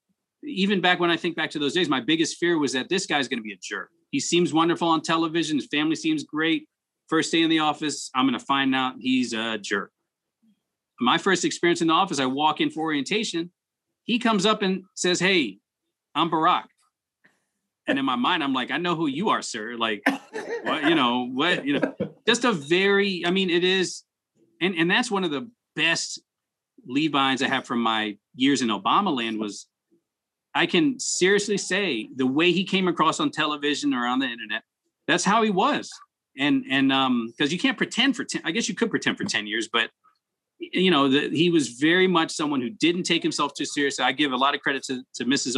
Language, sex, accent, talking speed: English, male, American, 215 wpm